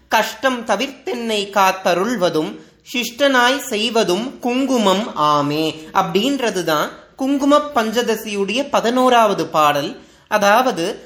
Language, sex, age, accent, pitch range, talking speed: Tamil, male, 30-49, native, 195-255 Hz, 75 wpm